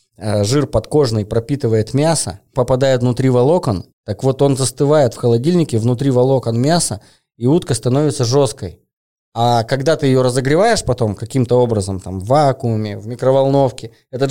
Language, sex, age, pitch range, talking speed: Russian, male, 20-39, 105-130 Hz, 145 wpm